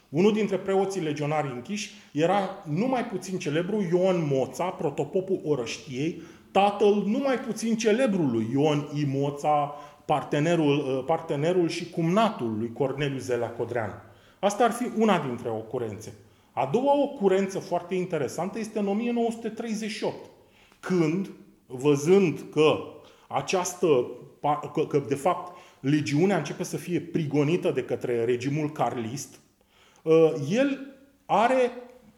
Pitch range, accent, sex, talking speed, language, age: 150-205 Hz, native, male, 115 wpm, Romanian, 30-49